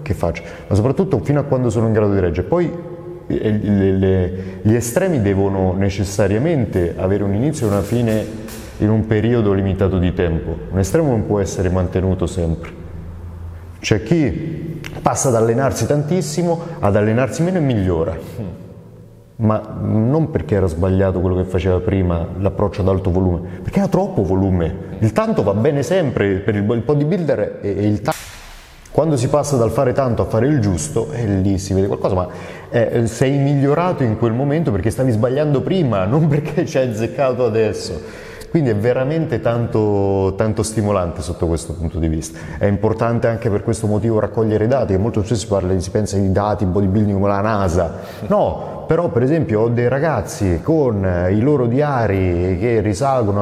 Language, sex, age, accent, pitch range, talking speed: Italian, male, 30-49, native, 95-130 Hz, 175 wpm